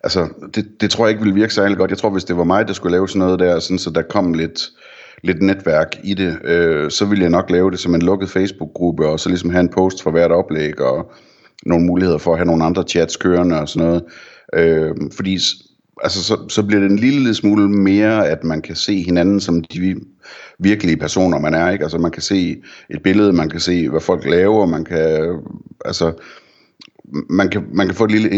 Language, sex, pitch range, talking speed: Danish, male, 80-95 Hz, 235 wpm